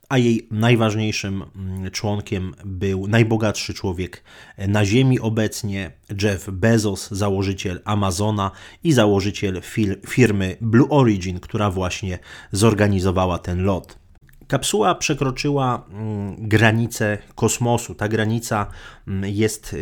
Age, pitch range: 30-49, 95-110 Hz